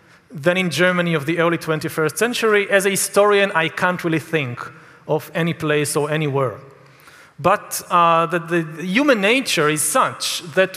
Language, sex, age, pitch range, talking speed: German, male, 40-59, 160-195 Hz, 160 wpm